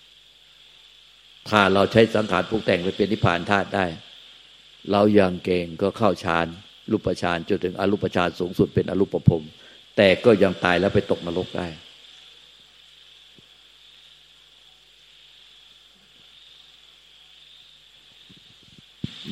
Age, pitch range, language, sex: 60-79, 90-110 Hz, Thai, male